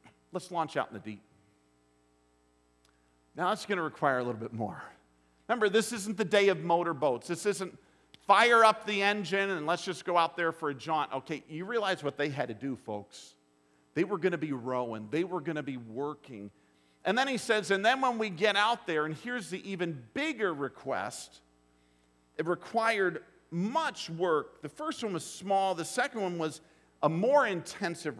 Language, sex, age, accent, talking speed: English, male, 50-69, American, 195 wpm